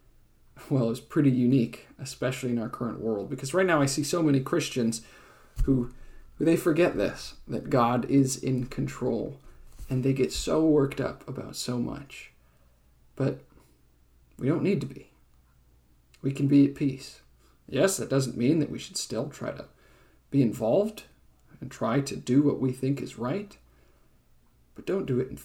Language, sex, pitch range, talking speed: English, male, 110-140 Hz, 170 wpm